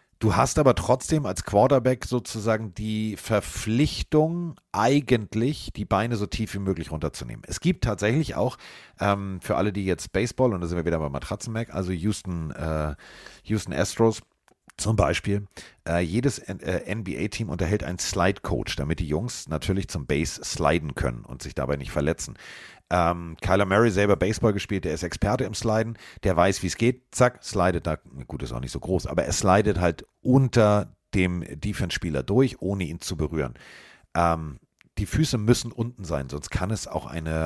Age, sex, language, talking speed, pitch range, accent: 40-59, male, German, 175 wpm, 80-110 Hz, German